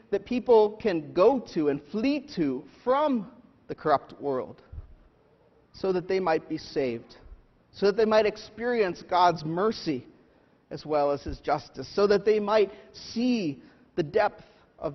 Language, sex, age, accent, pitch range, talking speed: English, male, 40-59, American, 130-185 Hz, 155 wpm